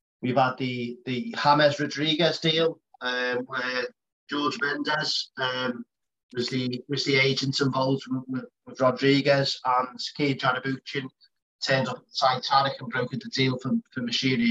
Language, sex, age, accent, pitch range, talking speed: English, male, 30-49, British, 130-160 Hz, 145 wpm